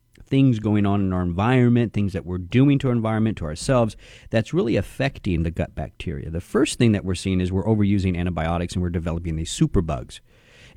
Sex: male